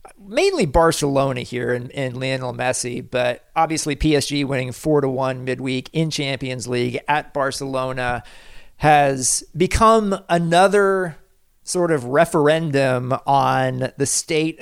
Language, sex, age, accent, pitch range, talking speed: English, male, 40-59, American, 130-160 Hz, 120 wpm